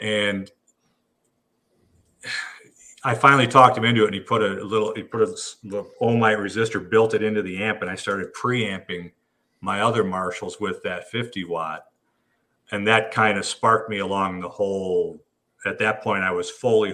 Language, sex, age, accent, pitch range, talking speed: English, male, 50-69, American, 95-115 Hz, 175 wpm